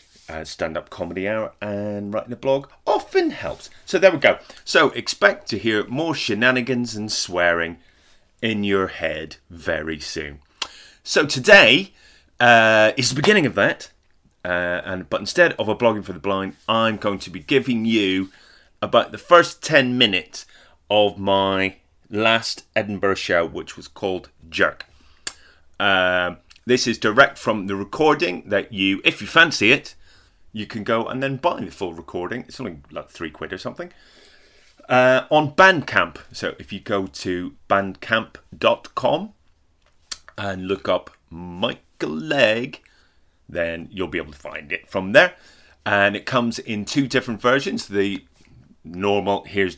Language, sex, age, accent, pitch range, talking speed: English, male, 30-49, British, 95-125 Hz, 150 wpm